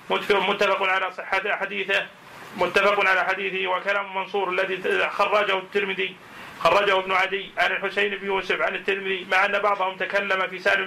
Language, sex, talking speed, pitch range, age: Arabic, male, 145 wpm, 190-195 Hz, 40-59